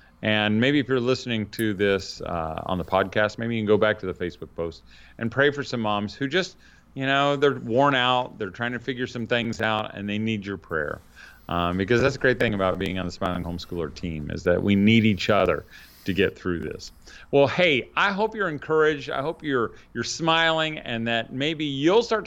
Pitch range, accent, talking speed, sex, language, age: 100-140 Hz, American, 225 wpm, male, English, 40-59